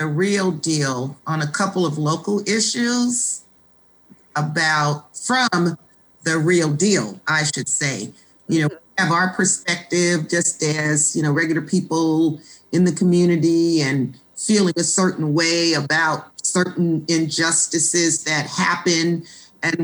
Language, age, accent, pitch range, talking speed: English, 40-59, American, 155-190 Hz, 130 wpm